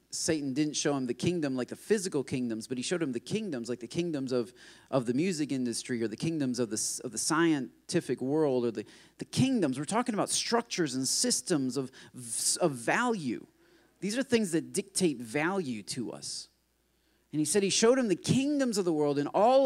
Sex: male